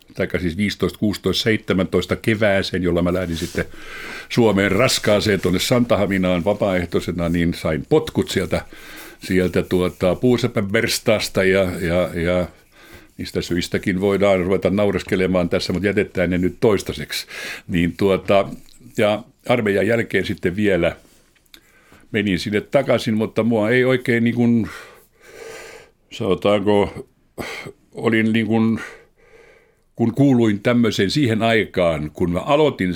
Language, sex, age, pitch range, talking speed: Finnish, male, 60-79, 90-115 Hz, 115 wpm